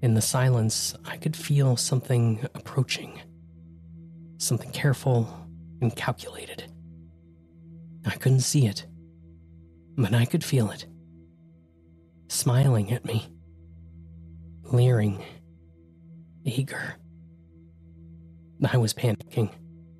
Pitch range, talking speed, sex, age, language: 85-135 Hz, 85 wpm, male, 30-49, English